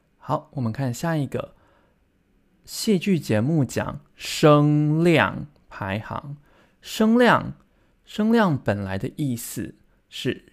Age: 20-39